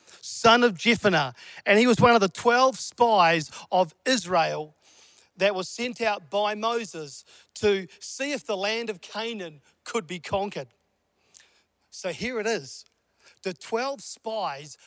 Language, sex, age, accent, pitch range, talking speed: English, male, 40-59, Australian, 185-235 Hz, 145 wpm